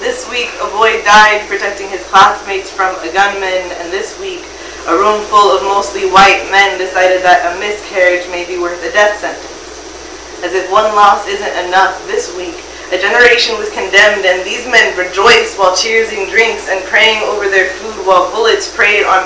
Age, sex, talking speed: 20-39, female, 185 wpm